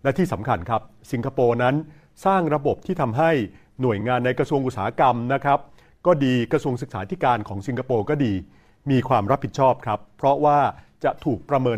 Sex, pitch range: male, 105-145 Hz